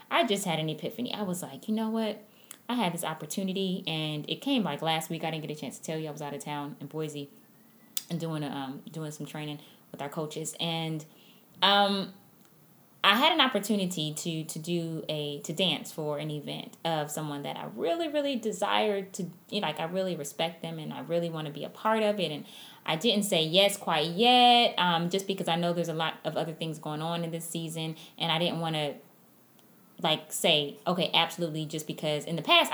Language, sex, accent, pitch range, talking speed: English, female, American, 160-210 Hz, 225 wpm